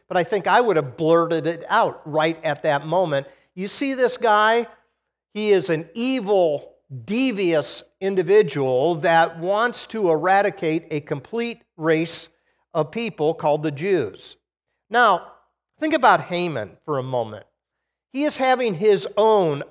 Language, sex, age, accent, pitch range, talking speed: English, male, 50-69, American, 160-215 Hz, 145 wpm